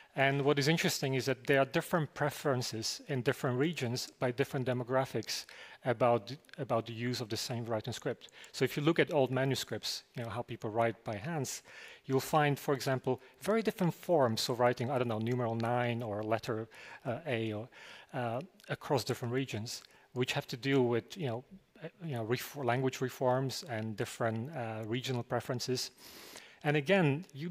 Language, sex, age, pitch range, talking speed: English, male, 40-59, 120-145 Hz, 180 wpm